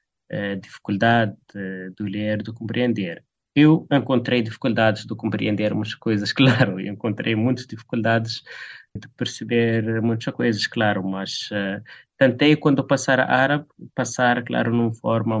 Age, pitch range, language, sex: 20-39, 105-125 Hz, Portuguese, male